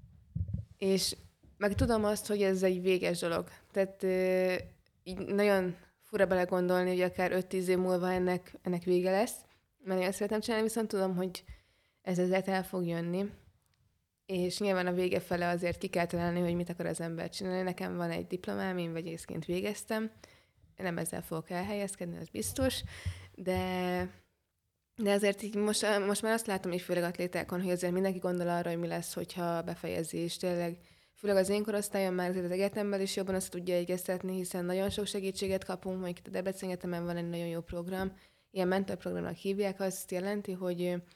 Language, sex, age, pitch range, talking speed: Hungarian, female, 20-39, 175-195 Hz, 175 wpm